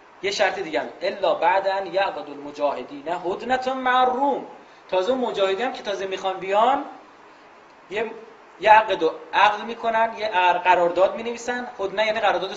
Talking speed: 135 wpm